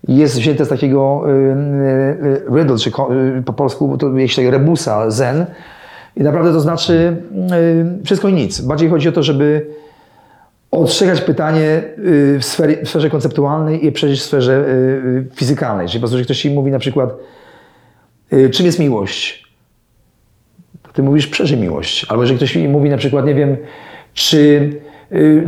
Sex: male